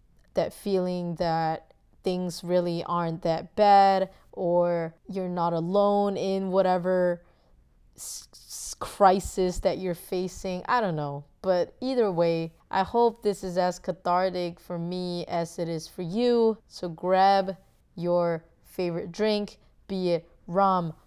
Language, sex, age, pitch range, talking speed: English, female, 20-39, 170-200 Hz, 130 wpm